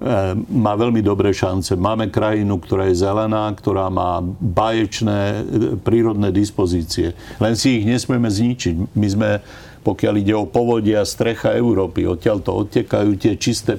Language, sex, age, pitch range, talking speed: Slovak, male, 50-69, 100-115 Hz, 140 wpm